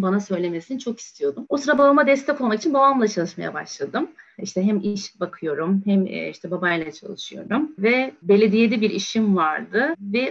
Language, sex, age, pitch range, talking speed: Turkish, female, 30-49, 185-235 Hz, 155 wpm